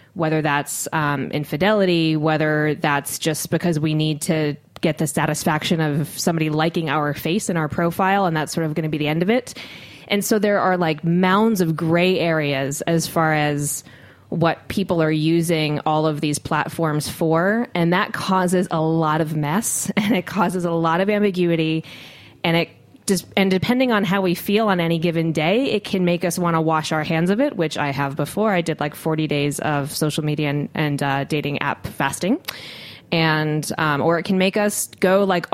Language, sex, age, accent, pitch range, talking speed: English, female, 20-39, American, 155-180 Hz, 200 wpm